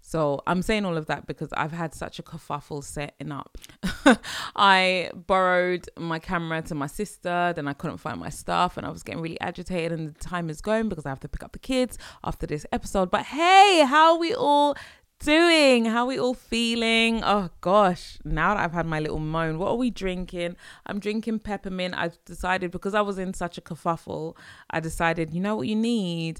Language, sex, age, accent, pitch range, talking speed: English, female, 20-39, British, 155-195 Hz, 215 wpm